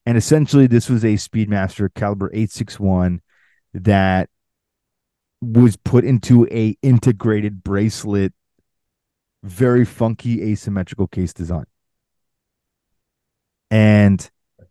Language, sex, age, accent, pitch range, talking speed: English, male, 30-49, American, 95-115 Hz, 85 wpm